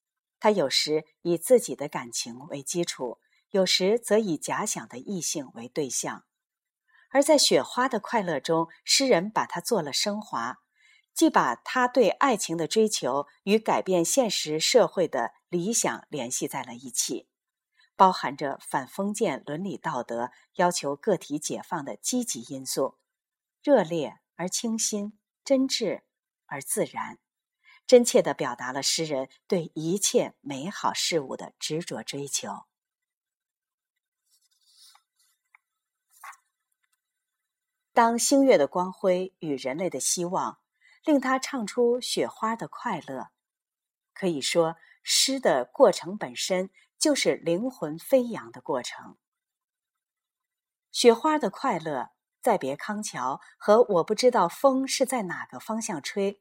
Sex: female